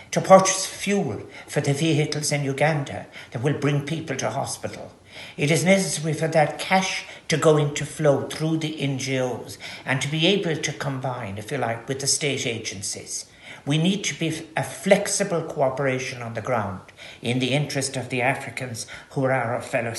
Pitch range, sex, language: 135-160 Hz, male, English